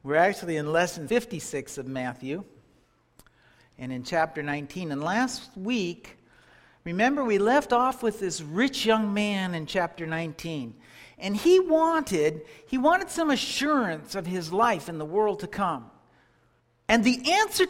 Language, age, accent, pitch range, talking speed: English, 60-79, American, 170-280 Hz, 150 wpm